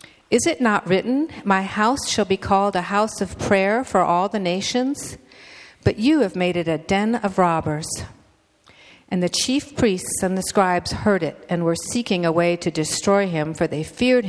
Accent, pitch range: American, 170-215 Hz